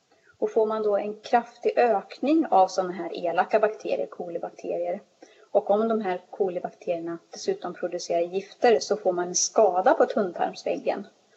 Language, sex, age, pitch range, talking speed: Swedish, female, 30-49, 185-235 Hz, 150 wpm